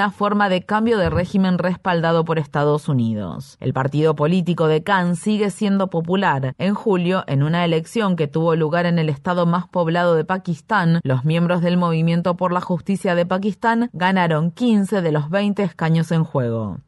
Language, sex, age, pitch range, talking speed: Spanish, female, 20-39, 160-190 Hz, 175 wpm